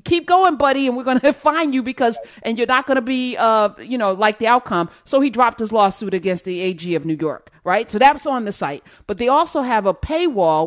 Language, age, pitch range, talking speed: English, 40-59, 190-275 Hz, 265 wpm